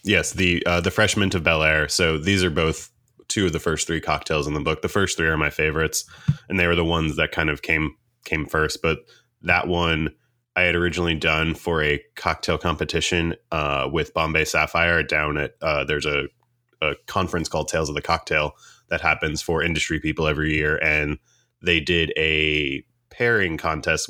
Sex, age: male, 20-39